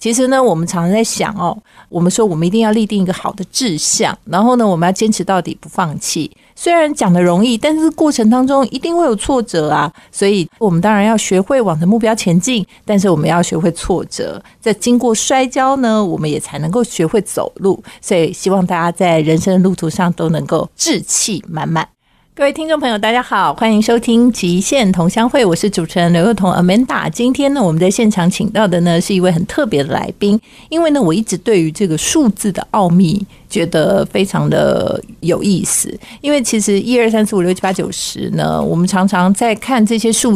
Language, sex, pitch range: Chinese, female, 180-230 Hz